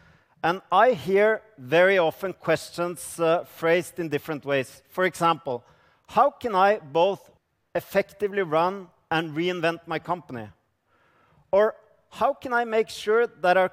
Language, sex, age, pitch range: Japanese, male, 40-59, 145-185 Hz